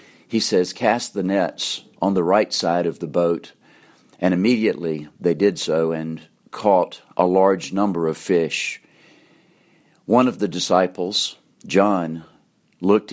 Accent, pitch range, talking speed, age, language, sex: American, 85-100 Hz, 135 wpm, 50-69, English, male